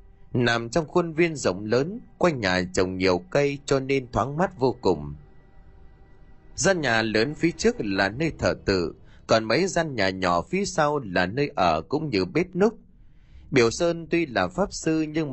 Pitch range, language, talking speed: 95-155 Hz, Vietnamese, 185 wpm